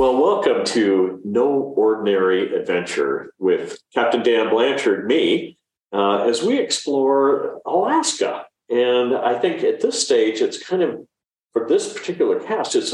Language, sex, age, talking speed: English, male, 50-69, 140 wpm